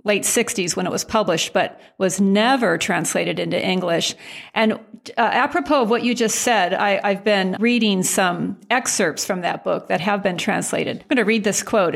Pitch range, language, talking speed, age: 190-230 Hz, English, 190 wpm, 50-69